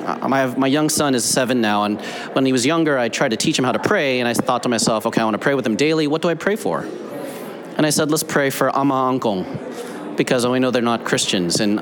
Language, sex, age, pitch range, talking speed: English, male, 30-49, 125-160 Hz, 275 wpm